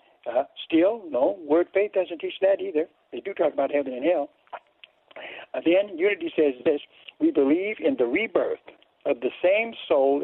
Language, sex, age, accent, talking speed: English, male, 60-79, American, 175 wpm